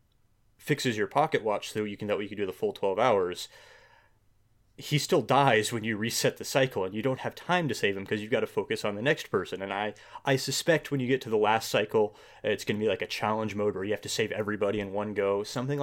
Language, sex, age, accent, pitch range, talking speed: English, male, 20-39, American, 105-140 Hz, 255 wpm